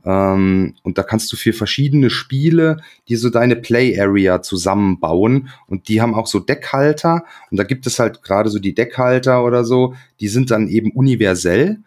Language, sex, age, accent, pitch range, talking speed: German, male, 30-49, German, 95-120 Hz, 175 wpm